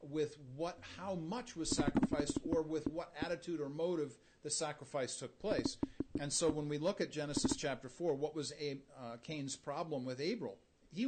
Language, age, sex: English, 40-59, male